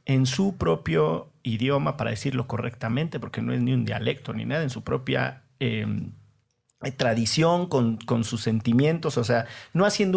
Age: 40-59